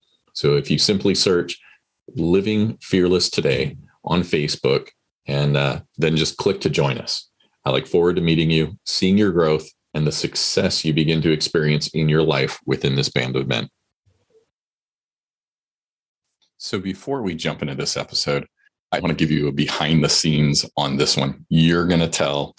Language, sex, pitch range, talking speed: English, male, 75-90 Hz, 175 wpm